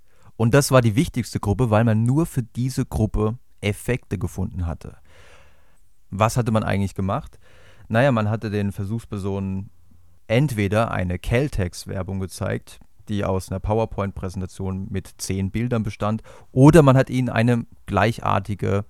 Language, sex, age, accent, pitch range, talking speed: German, male, 30-49, German, 95-115 Hz, 140 wpm